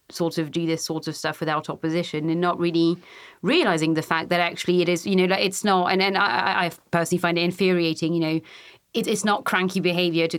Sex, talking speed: female, 230 wpm